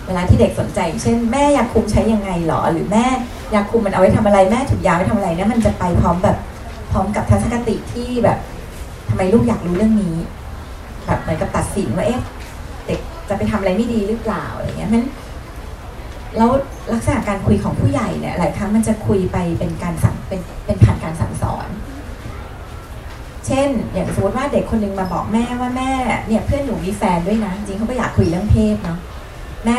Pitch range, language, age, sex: 165-225 Hz, Thai, 30-49, female